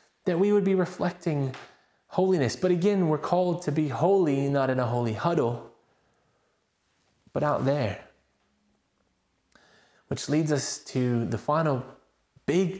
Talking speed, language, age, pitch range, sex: 130 wpm, English, 20-39, 160-245 Hz, male